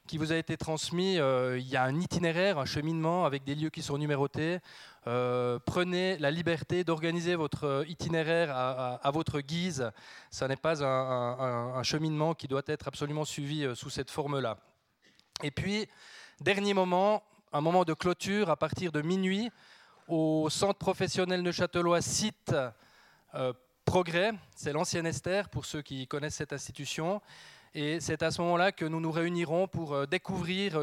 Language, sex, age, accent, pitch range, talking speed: French, male, 20-39, French, 140-175 Hz, 170 wpm